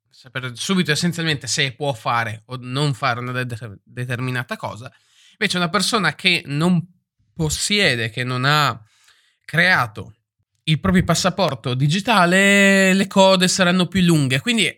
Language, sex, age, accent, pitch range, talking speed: Italian, male, 20-39, native, 120-175 Hz, 130 wpm